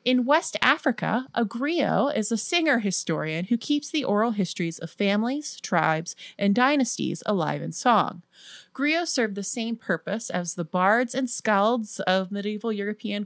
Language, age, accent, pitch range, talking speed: English, 30-49, American, 185-250 Hz, 155 wpm